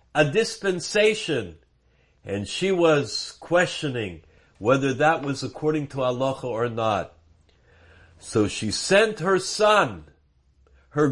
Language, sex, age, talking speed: English, male, 60-79, 110 wpm